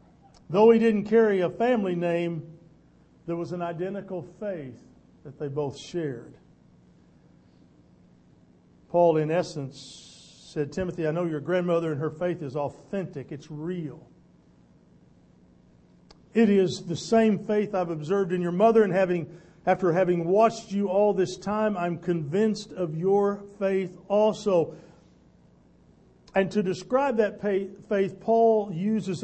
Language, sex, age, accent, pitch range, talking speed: English, male, 50-69, American, 160-210 Hz, 130 wpm